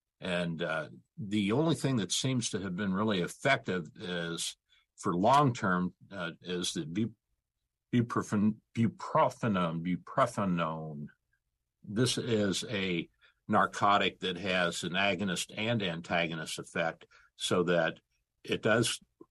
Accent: American